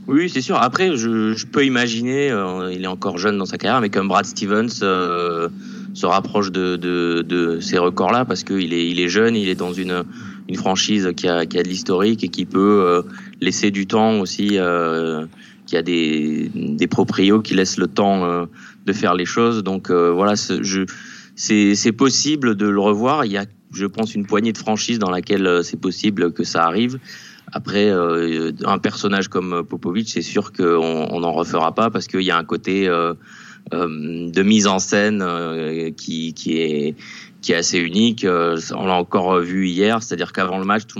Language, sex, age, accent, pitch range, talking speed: French, male, 20-39, French, 85-105 Hz, 200 wpm